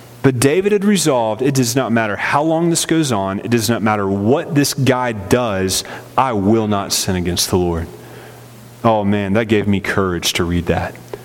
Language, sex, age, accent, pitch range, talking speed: English, male, 30-49, American, 105-135 Hz, 195 wpm